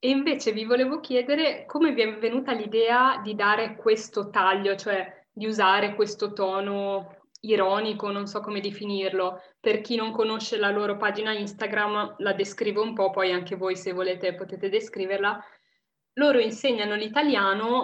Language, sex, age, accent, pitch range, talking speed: Italian, female, 20-39, native, 195-230 Hz, 155 wpm